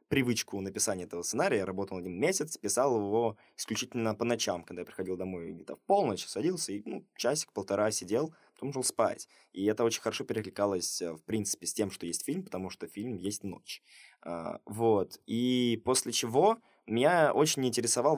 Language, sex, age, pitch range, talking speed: Russian, male, 20-39, 95-120 Hz, 170 wpm